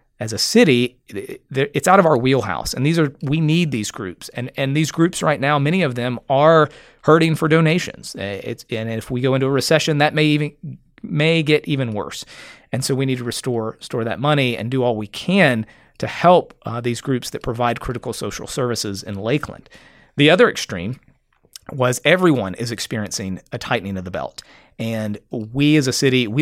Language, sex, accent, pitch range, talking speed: English, male, American, 115-145 Hz, 200 wpm